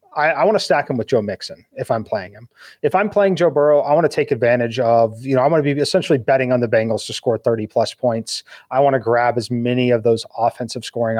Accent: American